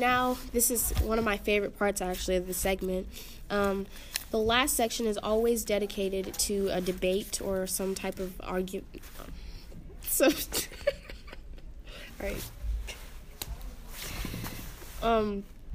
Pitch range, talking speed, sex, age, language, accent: 190-215 Hz, 120 wpm, female, 10-29, English, American